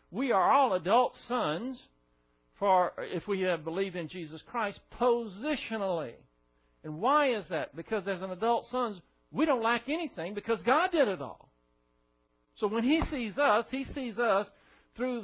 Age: 60-79